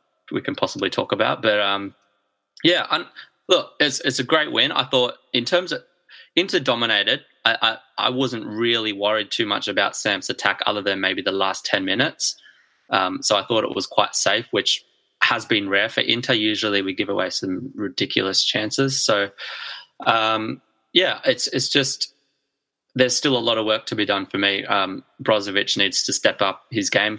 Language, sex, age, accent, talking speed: English, male, 20-39, Australian, 190 wpm